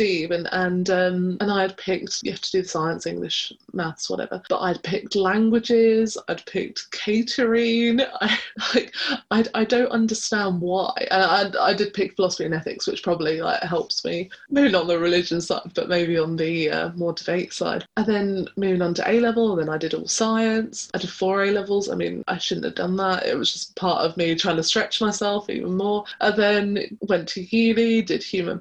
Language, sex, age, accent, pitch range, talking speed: English, female, 20-39, British, 180-225 Hz, 210 wpm